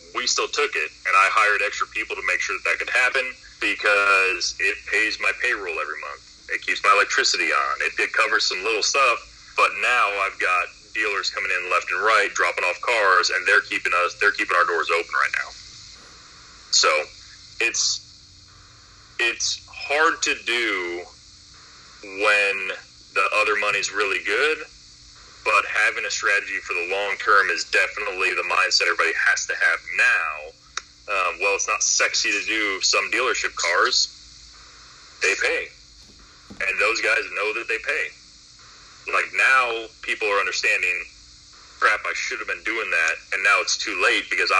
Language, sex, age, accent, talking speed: English, male, 30-49, American, 165 wpm